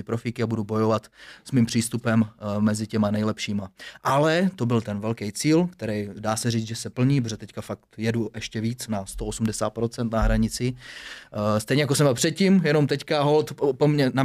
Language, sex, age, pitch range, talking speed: Czech, male, 20-39, 115-130 Hz, 175 wpm